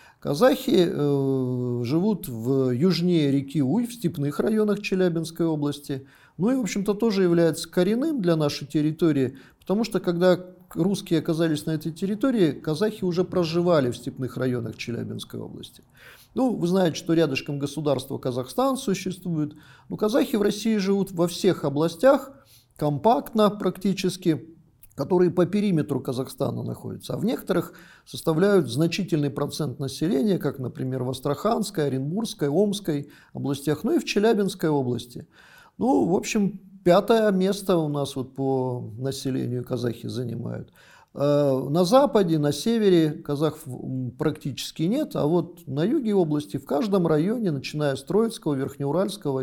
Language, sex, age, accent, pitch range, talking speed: Russian, male, 50-69, native, 135-190 Hz, 135 wpm